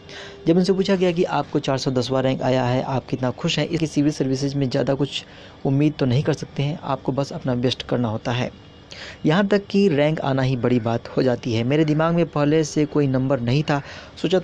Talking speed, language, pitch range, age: 230 wpm, Hindi, 130-155 Hz, 20-39